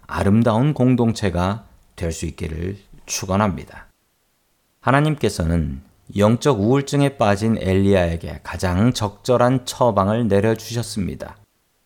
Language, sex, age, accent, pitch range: Korean, male, 40-59, native, 95-125 Hz